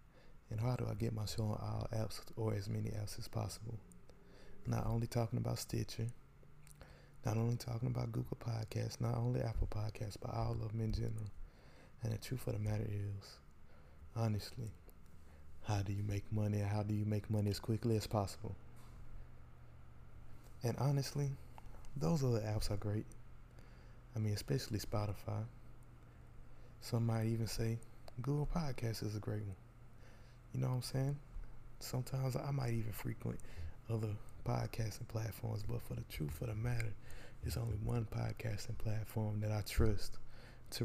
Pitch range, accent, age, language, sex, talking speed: 105-120 Hz, American, 20-39, English, male, 160 wpm